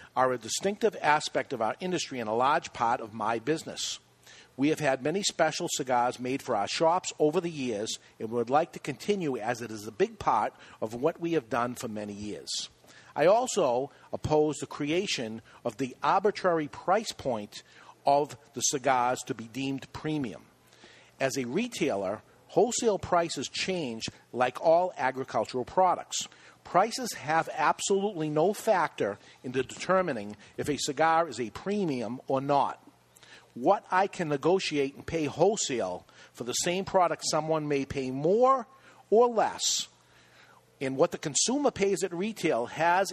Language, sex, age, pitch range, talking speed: English, male, 50-69, 130-185 Hz, 155 wpm